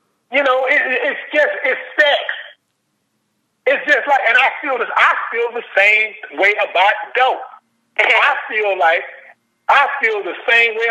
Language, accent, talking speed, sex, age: English, American, 160 wpm, male, 50-69